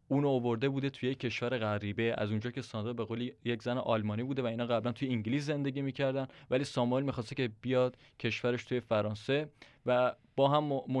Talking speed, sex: 190 wpm, male